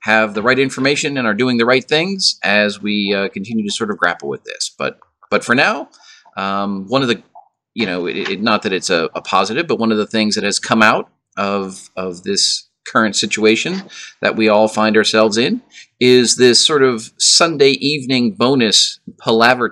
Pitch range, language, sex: 105-155 Hz, English, male